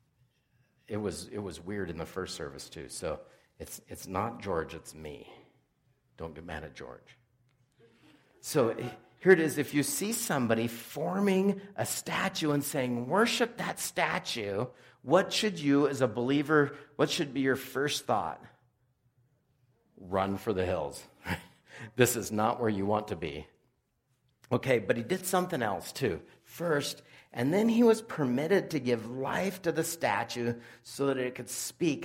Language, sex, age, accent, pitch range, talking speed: English, male, 50-69, American, 105-145 Hz, 160 wpm